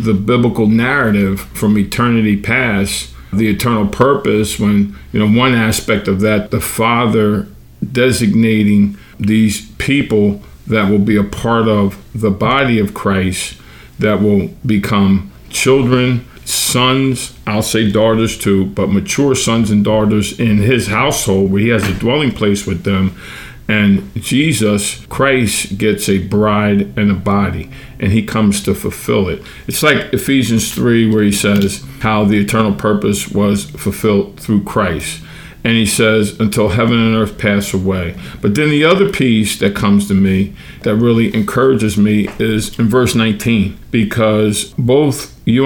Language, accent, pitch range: English, American, 100-115 Hz